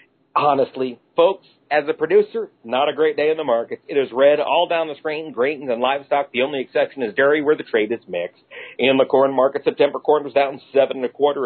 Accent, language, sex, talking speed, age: American, English, male, 230 wpm, 50-69